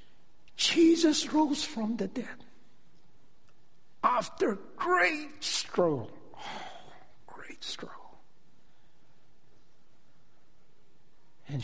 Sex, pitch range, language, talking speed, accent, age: male, 135-210 Hz, English, 55 wpm, American, 60-79